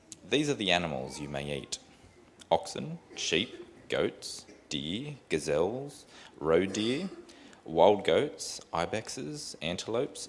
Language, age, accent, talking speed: English, 30-49, Australian, 105 wpm